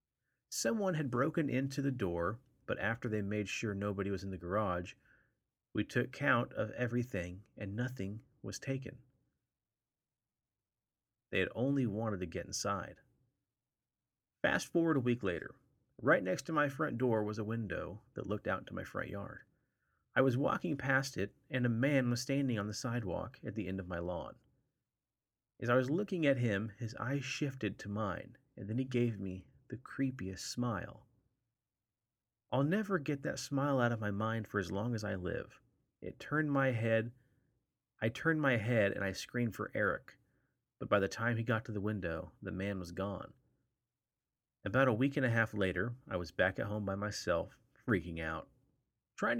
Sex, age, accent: male, 30-49, American